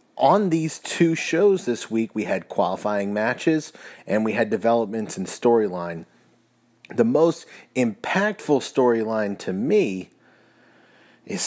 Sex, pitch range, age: male, 110-145 Hz, 30-49